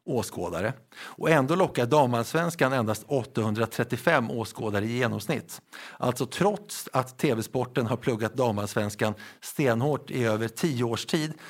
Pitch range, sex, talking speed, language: 115-145 Hz, male, 120 wpm, Swedish